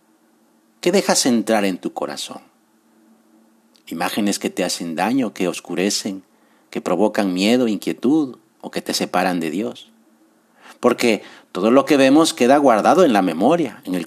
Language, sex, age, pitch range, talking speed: Spanish, male, 50-69, 100-125 Hz, 150 wpm